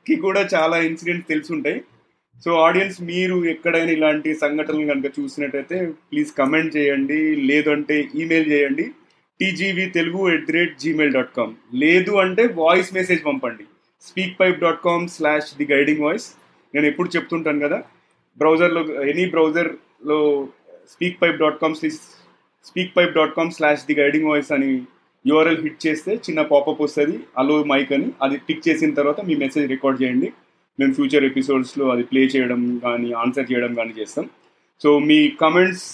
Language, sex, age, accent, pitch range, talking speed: Telugu, male, 30-49, native, 145-180 Hz, 140 wpm